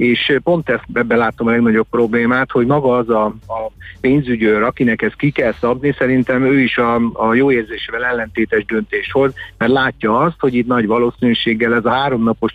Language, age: Hungarian, 50-69